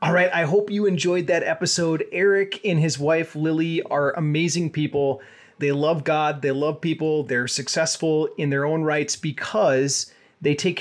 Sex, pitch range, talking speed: male, 145-175 Hz, 170 wpm